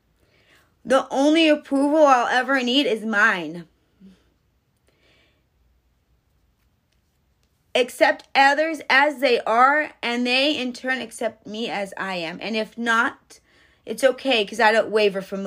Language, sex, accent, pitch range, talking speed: English, female, American, 200-265 Hz, 125 wpm